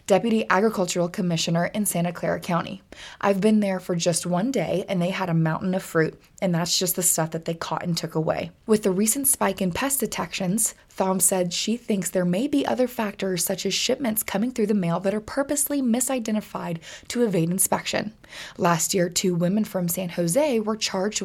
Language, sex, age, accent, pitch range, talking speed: English, female, 20-39, American, 180-220 Hz, 200 wpm